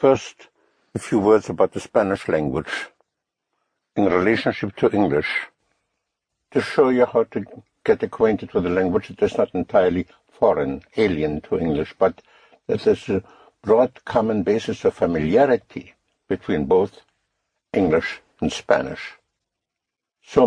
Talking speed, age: 130 wpm, 60-79